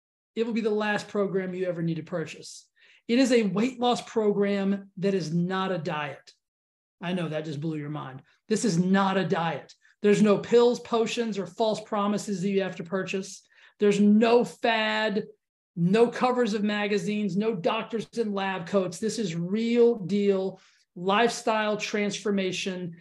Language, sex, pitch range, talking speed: English, male, 185-225 Hz, 165 wpm